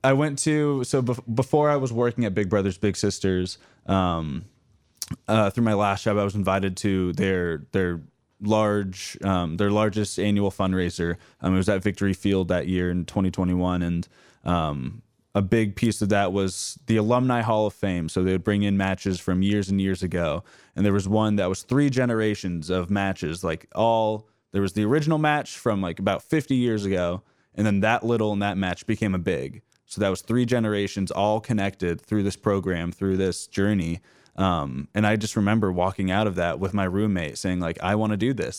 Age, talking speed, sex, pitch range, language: 20-39, 200 wpm, male, 95-110 Hz, English